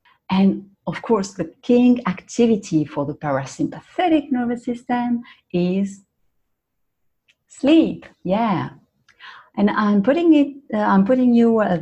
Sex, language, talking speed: female, English, 115 wpm